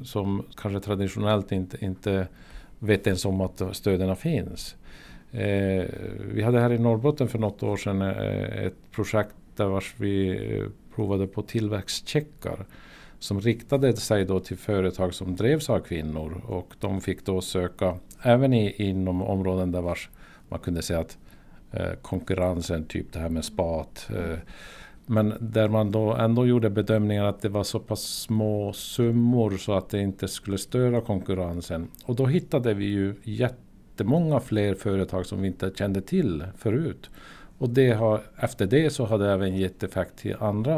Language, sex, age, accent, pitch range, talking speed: Swedish, male, 50-69, Norwegian, 95-115 Hz, 155 wpm